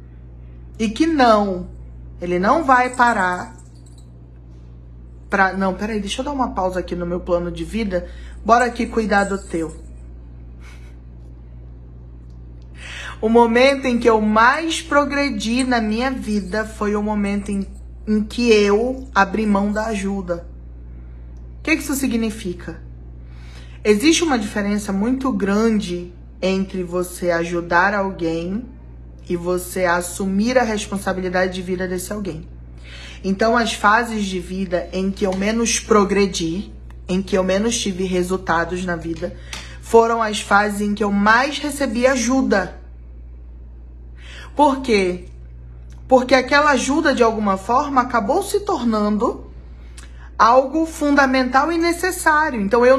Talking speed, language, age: 130 wpm, Portuguese, 20-39